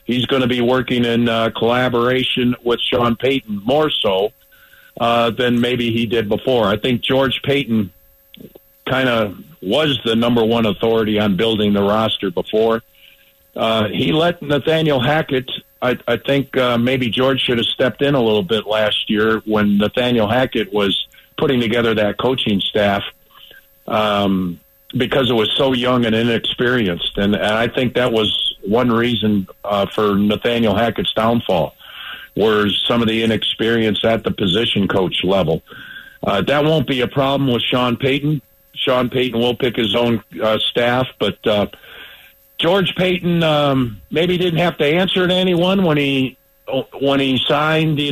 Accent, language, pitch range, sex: American, English, 110-140 Hz, male